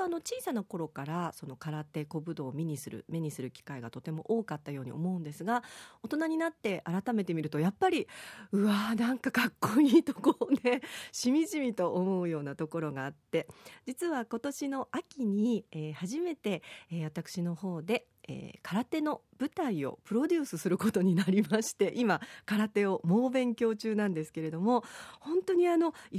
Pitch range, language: 165-250 Hz, Japanese